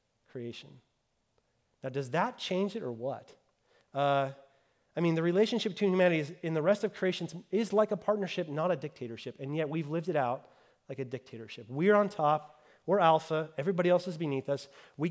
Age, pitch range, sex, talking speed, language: 30-49, 135-180 Hz, male, 185 wpm, English